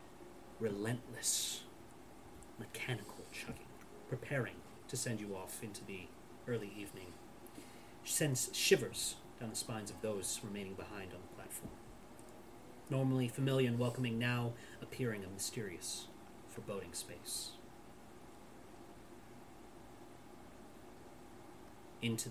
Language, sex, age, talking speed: English, male, 30-49, 95 wpm